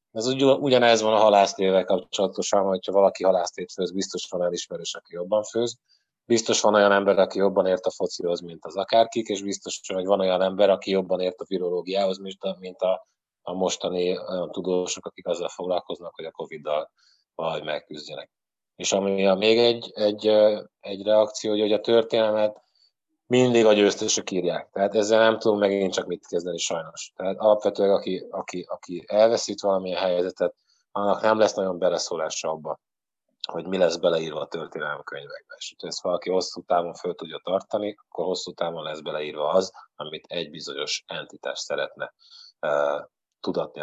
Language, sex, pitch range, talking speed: Hungarian, male, 95-115 Hz, 165 wpm